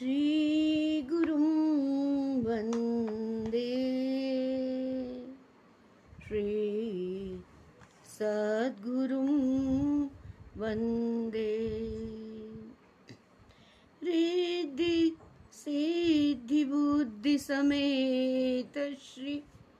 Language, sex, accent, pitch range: Hindi, female, native, 215-270 Hz